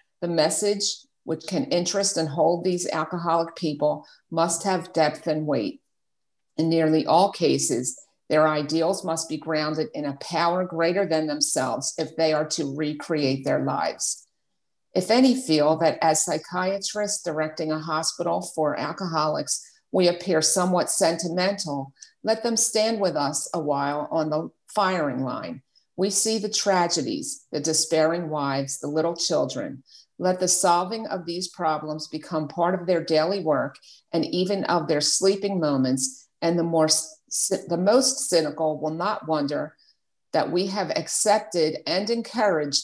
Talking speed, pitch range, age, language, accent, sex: 145 wpm, 155-190 Hz, 50-69, English, American, female